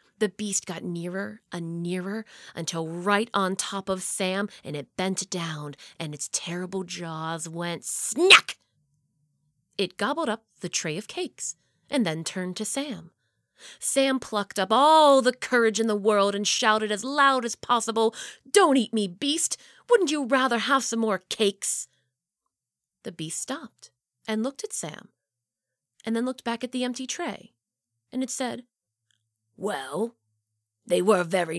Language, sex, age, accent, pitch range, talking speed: English, female, 30-49, American, 175-260 Hz, 155 wpm